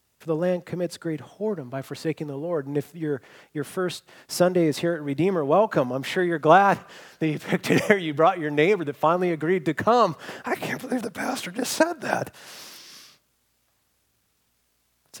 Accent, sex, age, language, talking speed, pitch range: American, male, 30-49, English, 185 wpm, 130-170 Hz